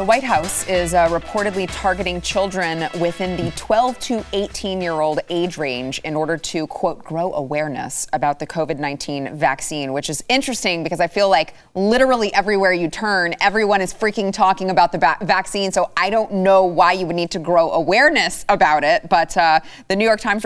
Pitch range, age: 140-180 Hz, 20-39